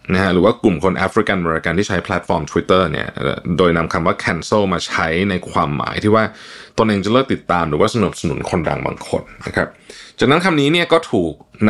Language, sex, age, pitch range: Thai, male, 20-39, 90-115 Hz